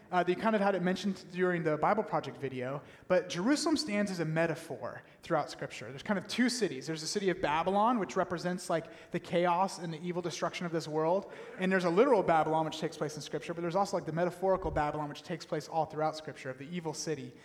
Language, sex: English, male